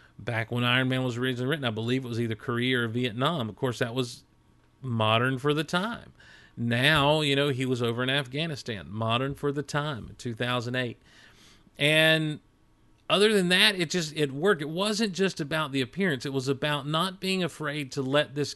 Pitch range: 120-145 Hz